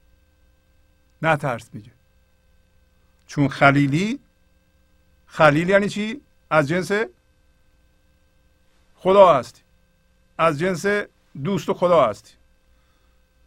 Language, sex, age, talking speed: Persian, male, 50-69, 75 wpm